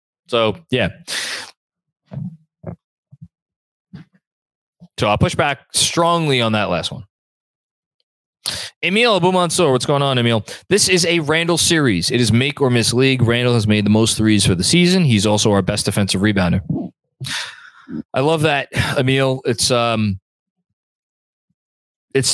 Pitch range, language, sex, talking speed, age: 105-140 Hz, English, male, 135 wpm, 20-39